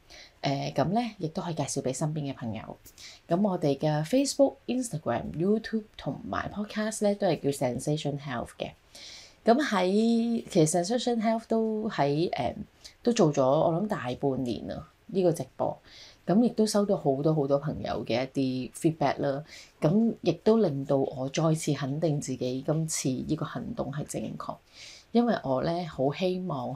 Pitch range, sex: 135-180 Hz, female